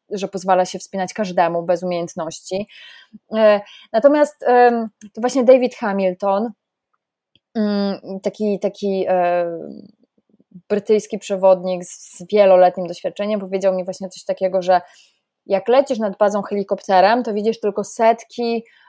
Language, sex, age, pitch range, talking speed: Polish, female, 20-39, 190-240 Hz, 110 wpm